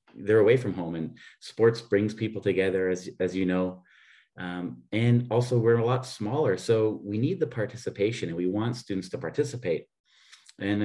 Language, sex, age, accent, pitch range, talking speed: English, male, 30-49, American, 95-125 Hz, 175 wpm